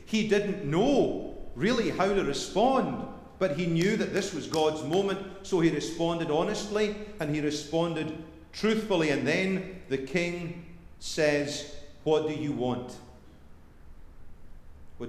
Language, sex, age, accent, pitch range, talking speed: English, male, 40-59, British, 135-175 Hz, 130 wpm